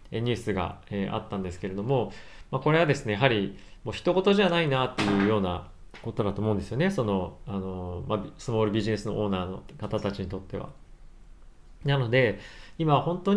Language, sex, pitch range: Japanese, male, 100-140 Hz